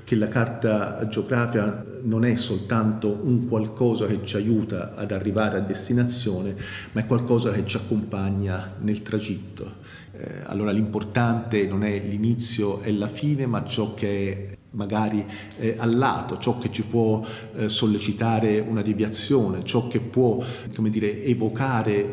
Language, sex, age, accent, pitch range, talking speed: Italian, male, 50-69, native, 100-120 Hz, 145 wpm